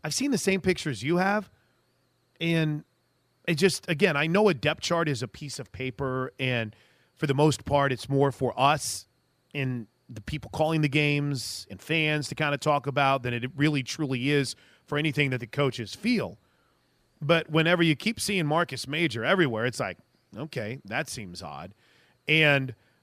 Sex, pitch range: male, 140-175 Hz